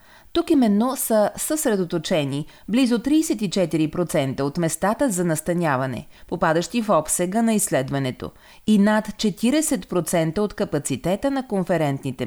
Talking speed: 110 wpm